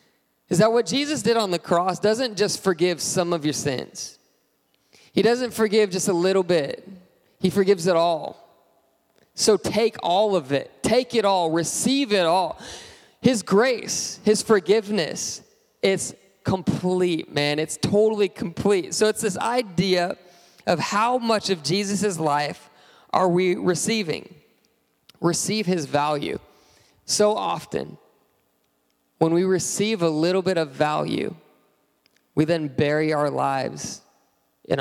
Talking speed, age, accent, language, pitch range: 135 wpm, 20-39, American, English, 165-205 Hz